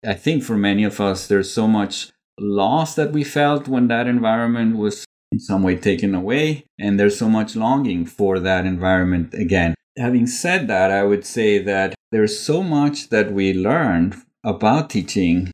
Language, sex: English, male